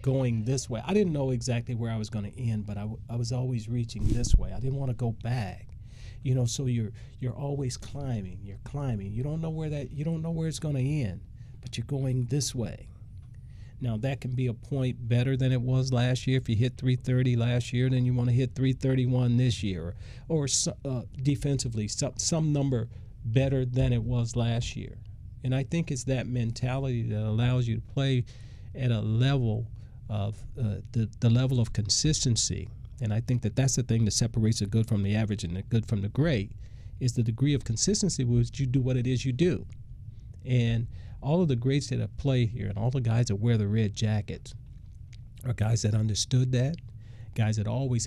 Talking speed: 220 wpm